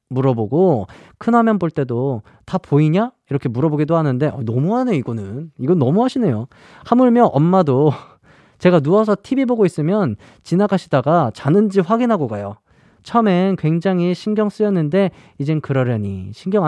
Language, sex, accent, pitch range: Korean, male, native, 135-200 Hz